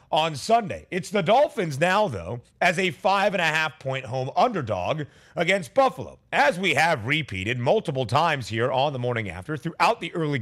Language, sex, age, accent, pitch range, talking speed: English, male, 30-49, American, 135-185 Hz, 185 wpm